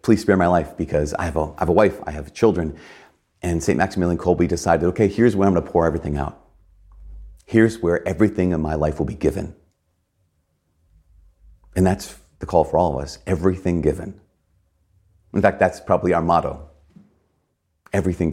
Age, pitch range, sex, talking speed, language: 40-59, 85-100 Hz, male, 180 wpm, English